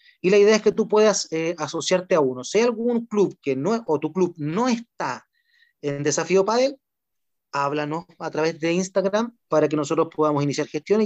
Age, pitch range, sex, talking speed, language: 30-49, 165-230 Hz, male, 200 wpm, Spanish